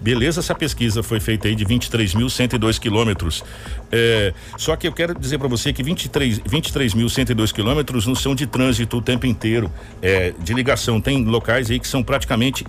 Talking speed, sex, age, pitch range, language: 180 wpm, male, 60-79, 115-165 Hz, Portuguese